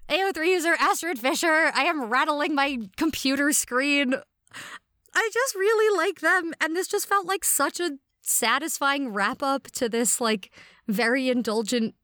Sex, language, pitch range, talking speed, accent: female, English, 205-315 Hz, 150 wpm, American